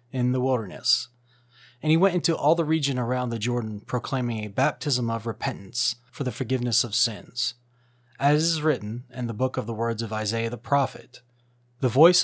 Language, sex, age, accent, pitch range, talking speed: English, male, 30-49, American, 120-140 Hz, 185 wpm